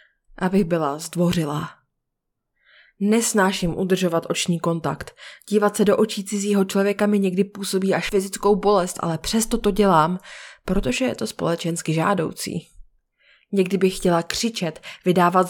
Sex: female